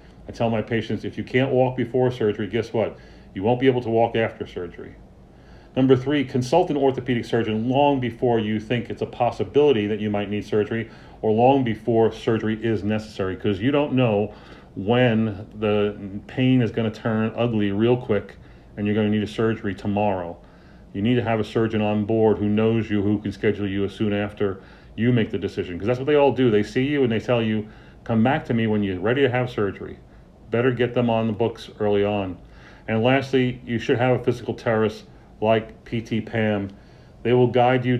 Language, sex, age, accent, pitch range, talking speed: English, male, 40-59, American, 105-120 Hz, 210 wpm